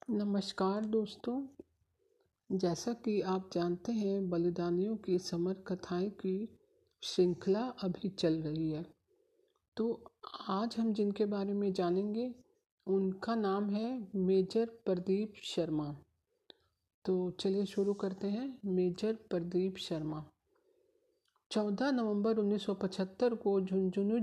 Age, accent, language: 50-69, native, Hindi